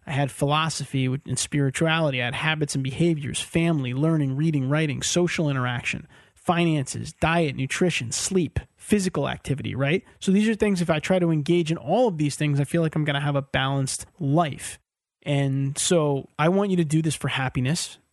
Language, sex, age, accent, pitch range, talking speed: English, male, 30-49, American, 135-170 Hz, 190 wpm